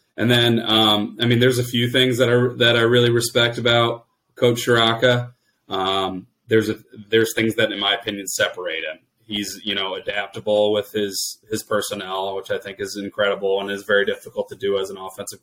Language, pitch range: English, 100-115 Hz